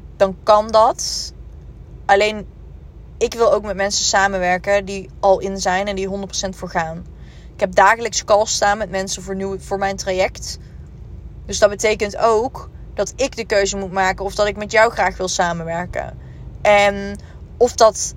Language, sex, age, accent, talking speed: Dutch, female, 20-39, Dutch, 165 wpm